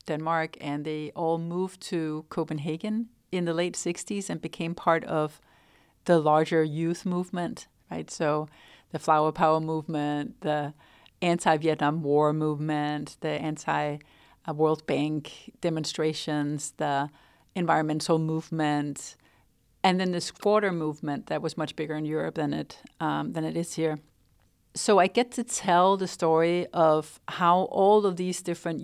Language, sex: English, female